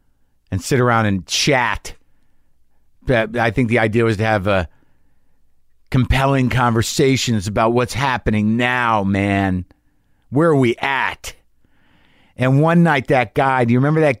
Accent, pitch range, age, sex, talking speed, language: American, 105-130 Hz, 50-69, male, 145 wpm, English